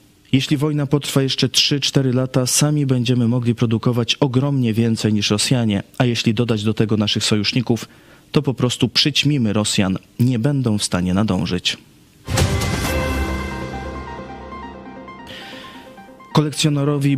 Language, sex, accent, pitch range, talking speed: Polish, male, native, 105-130 Hz, 110 wpm